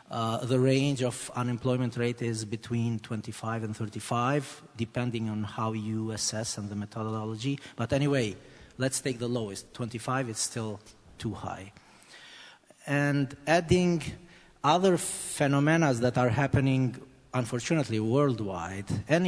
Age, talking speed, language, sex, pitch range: 40-59, 125 wpm, English, male, 115-145 Hz